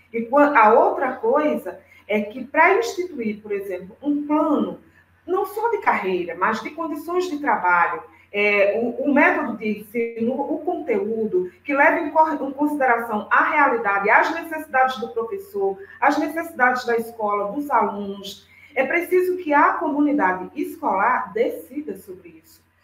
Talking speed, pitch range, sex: 140 wpm, 205-300 Hz, female